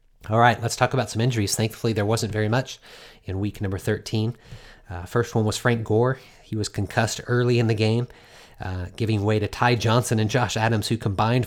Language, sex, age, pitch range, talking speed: English, male, 30-49, 105-125 Hz, 210 wpm